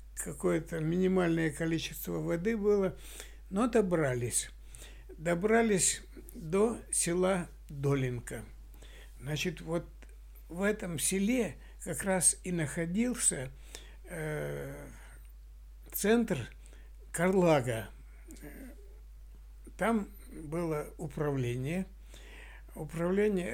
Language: Russian